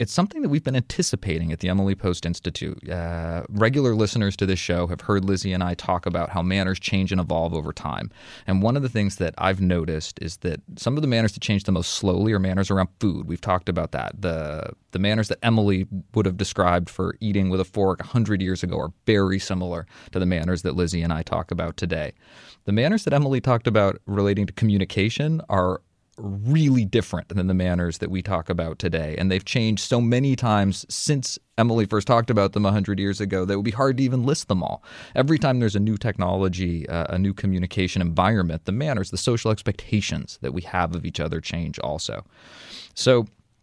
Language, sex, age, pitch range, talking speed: English, male, 20-39, 90-110 Hz, 215 wpm